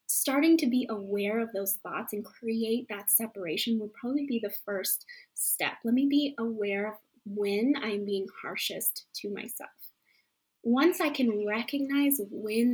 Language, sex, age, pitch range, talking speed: English, female, 20-39, 210-275 Hz, 155 wpm